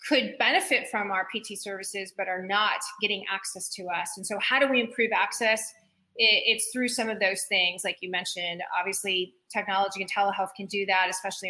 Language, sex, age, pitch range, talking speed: English, female, 30-49, 200-240 Hz, 195 wpm